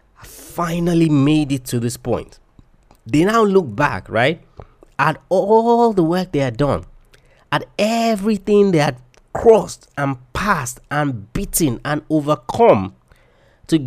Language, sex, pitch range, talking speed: English, male, 125-175 Hz, 130 wpm